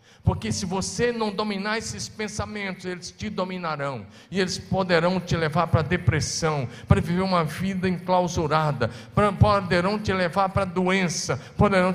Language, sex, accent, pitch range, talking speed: Portuguese, male, Brazilian, 145-205 Hz, 140 wpm